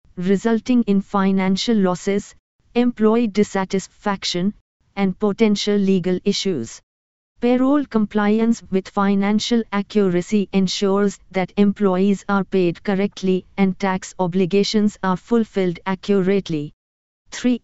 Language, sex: English, female